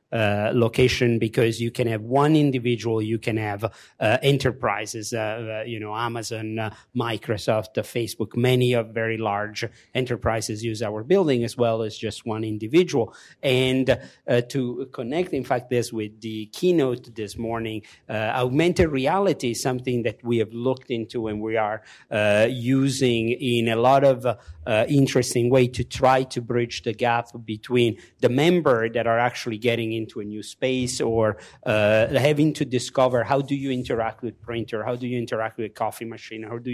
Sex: male